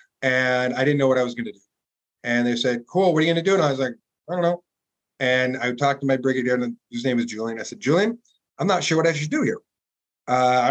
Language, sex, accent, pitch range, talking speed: English, male, American, 125-165 Hz, 265 wpm